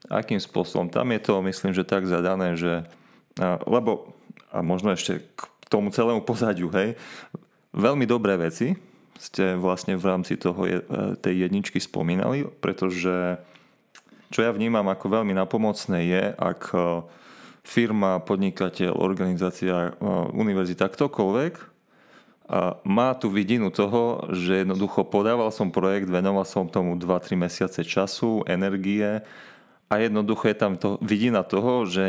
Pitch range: 90-110 Hz